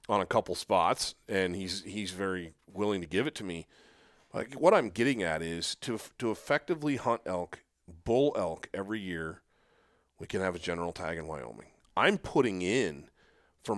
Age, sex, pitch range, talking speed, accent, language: 40-59, male, 85-110 Hz, 180 wpm, American, English